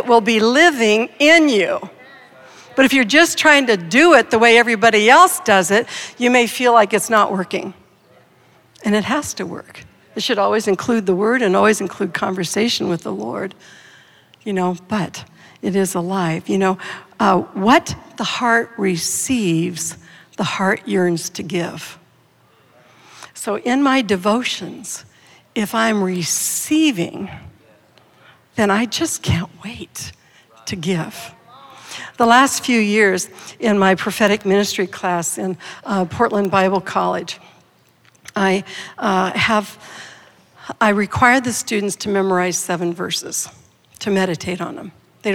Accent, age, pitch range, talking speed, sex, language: American, 60-79, 185-225 Hz, 140 wpm, female, English